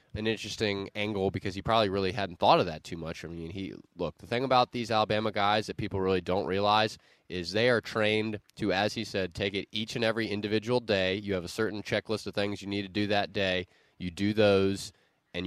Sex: male